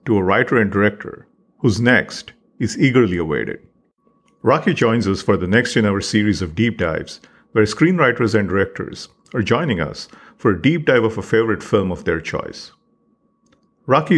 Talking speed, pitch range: 175 wpm, 100-120 Hz